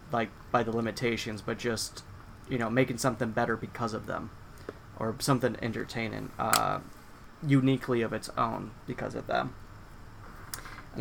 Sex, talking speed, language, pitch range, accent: male, 140 wpm, English, 105-125 Hz, American